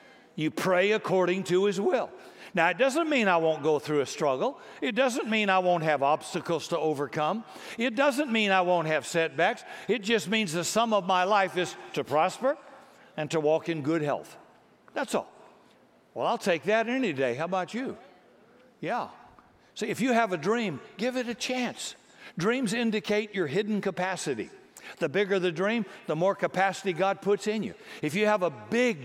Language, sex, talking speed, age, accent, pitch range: English, male, 190 wpm, 60-79, American, 155-220 Hz